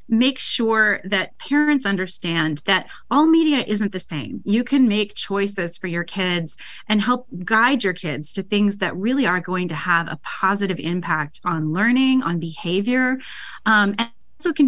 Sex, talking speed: female, 160 wpm